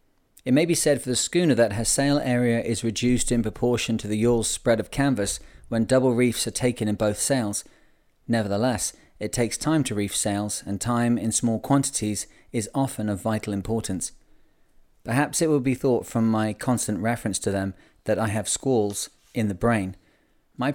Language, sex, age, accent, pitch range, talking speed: English, male, 40-59, British, 105-125 Hz, 190 wpm